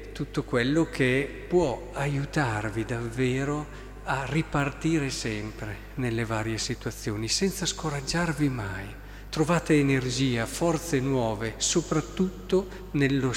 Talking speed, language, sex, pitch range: 95 wpm, Italian, male, 110-145 Hz